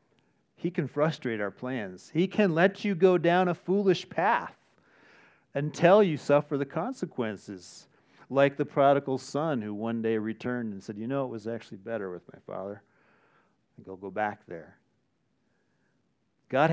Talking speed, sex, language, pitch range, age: 160 wpm, male, English, 125-170 Hz, 40-59